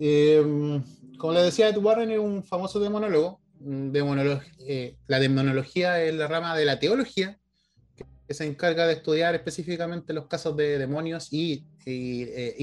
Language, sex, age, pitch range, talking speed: Spanish, male, 30-49, 125-160 Hz, 155 wpm